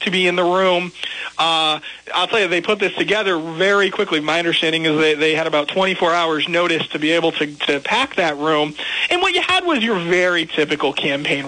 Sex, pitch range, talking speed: male, 160-195 Hz, 220 wpm